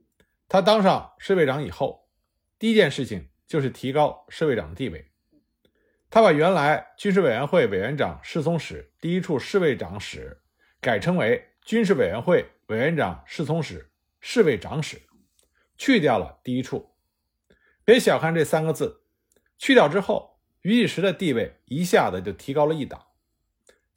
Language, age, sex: Chinese, 50-69, male